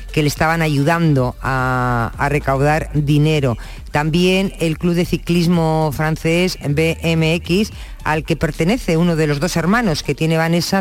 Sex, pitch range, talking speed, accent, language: female, 145-170 Hz, 145 wpm, Spanish, Spanish